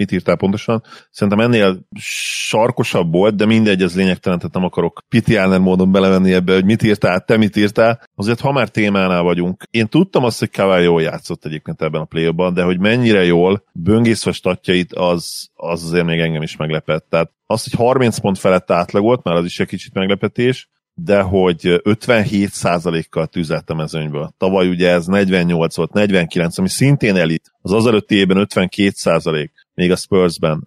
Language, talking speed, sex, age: Hungarian, 175 wpm, male, 30-49